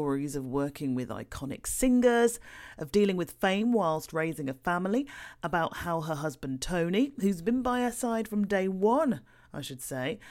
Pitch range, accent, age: 150-205 Hz, British, 40-59